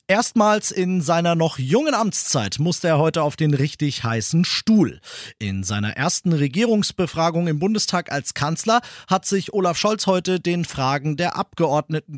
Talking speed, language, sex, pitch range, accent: 155 wpm, German, male, 130-175 Hz, German